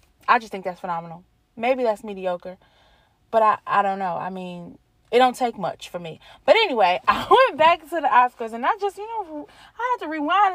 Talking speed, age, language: 215 wpm, 30-49, English